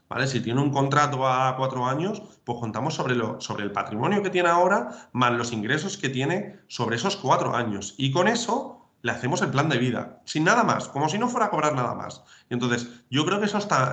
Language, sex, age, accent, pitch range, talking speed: Spanish, male, 30-49, Spanish, 120-145 Hz, 235 wpm